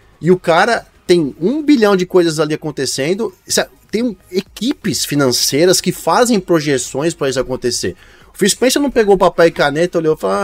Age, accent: 20-39, Brazilian